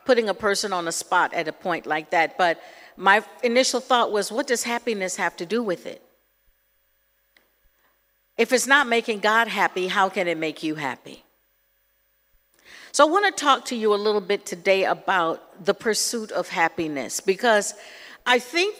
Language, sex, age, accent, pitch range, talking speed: English, female, 50-69, American, 185-245 Hz, 175 wpm